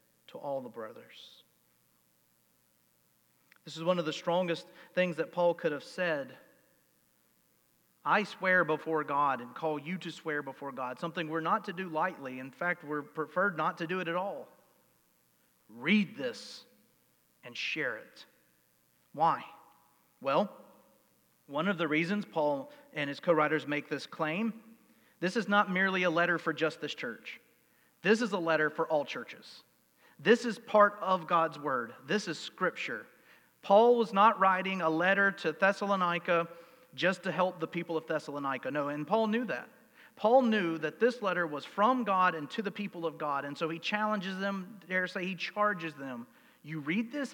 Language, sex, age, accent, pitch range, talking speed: English, male, 40-59, American, 155-205 Hz, 170 wpm